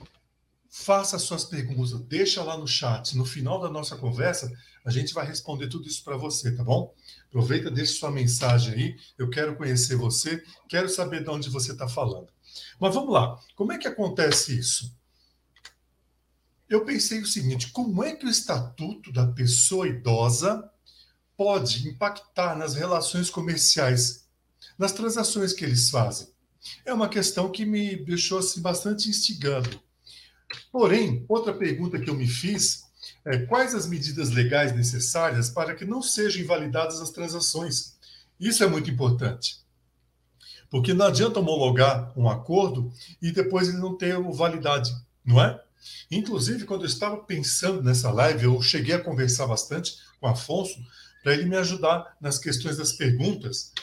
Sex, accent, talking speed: male, Brazilian, 150 wpm